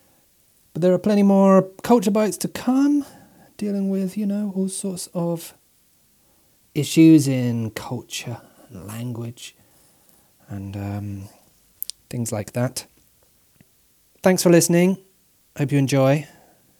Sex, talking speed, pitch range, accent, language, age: male, 110 wpm, 115-165 Hz, British, English, 30-49